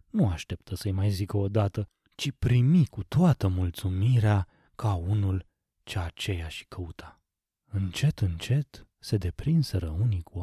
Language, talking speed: Romanian, 140 wpm